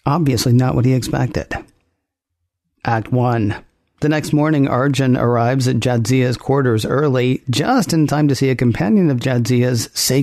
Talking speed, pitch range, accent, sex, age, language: 155 wpm, 115-140 Hz, American, male, 50-69, English